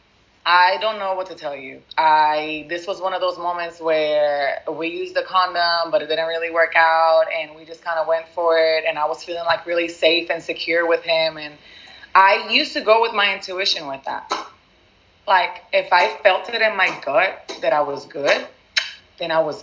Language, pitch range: English, 155-205 Hz